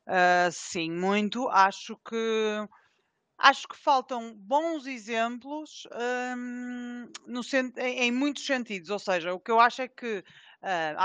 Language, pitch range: Portuguese, 200-250 Hz